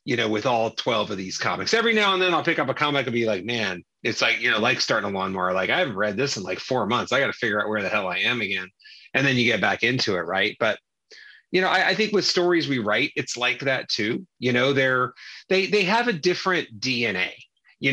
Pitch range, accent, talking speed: 130-170 Hz, American, 270 wpm